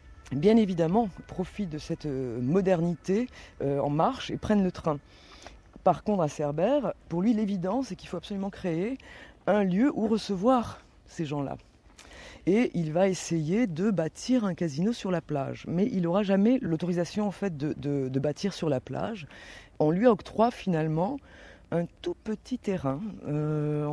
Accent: French